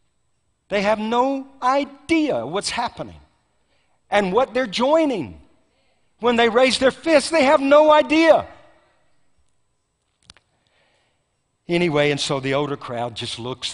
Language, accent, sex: English, American, male